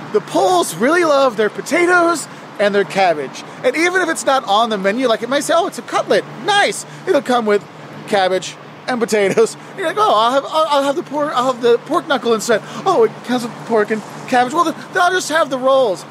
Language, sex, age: English, male, 20-39